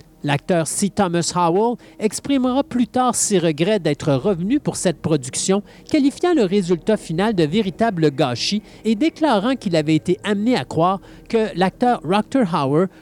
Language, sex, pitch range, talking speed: French, male, 155-220 Hz, 150 wpm